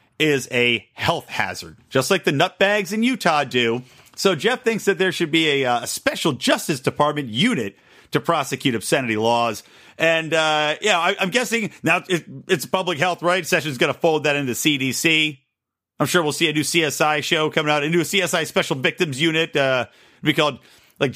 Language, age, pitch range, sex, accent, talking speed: English, 40-59, 135-190 Hz, male, American, 195 wpm